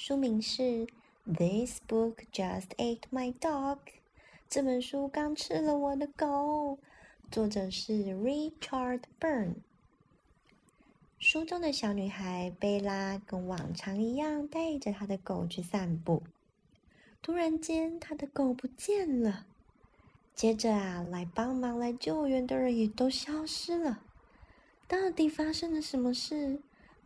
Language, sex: Chinese, female